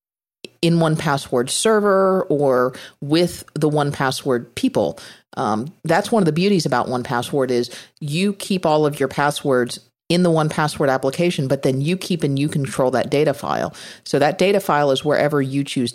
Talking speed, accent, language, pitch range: 170 wpm, American, English, 130-165 Hz